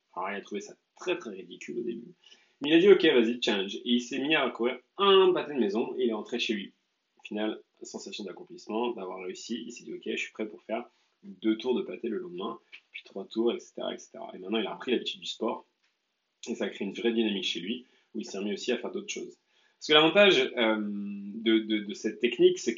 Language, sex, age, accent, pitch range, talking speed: French, male, 30-49, French, 105-125 Hz, 250 wpm